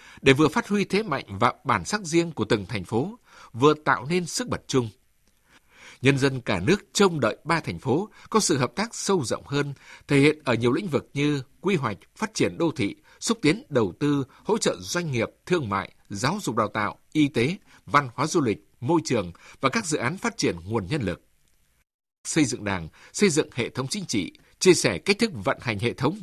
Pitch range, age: 120-180 Hz, 60-79